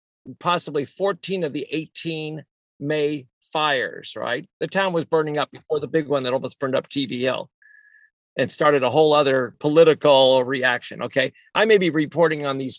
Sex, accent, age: male, American, 50-69